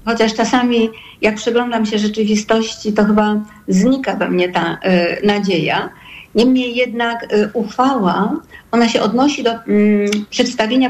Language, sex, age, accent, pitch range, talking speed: Polish, female, 50-69, native, 200-235 Hz, 115 wpm